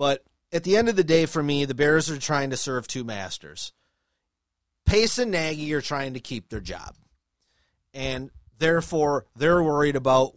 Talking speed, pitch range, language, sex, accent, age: 180 wpm, 130-180 Hz, English, male, American, 30-49